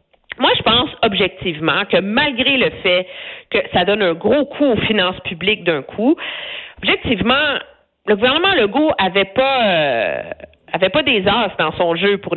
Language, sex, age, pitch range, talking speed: French, female, 50-69, 185-290 Hz, 165 wpm